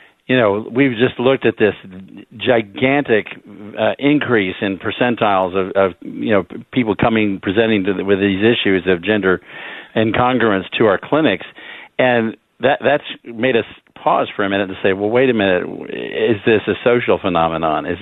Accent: American